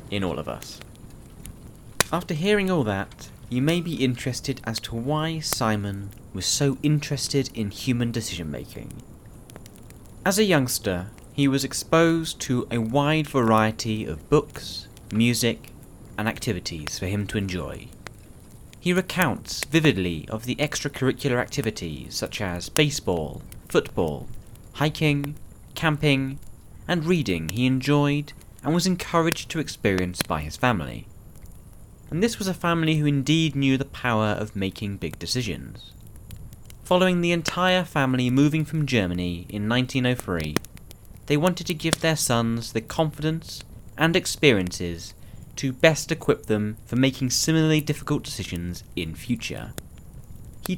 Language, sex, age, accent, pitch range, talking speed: English, male, 30-49, British, 105-150 Hz, 130 wpm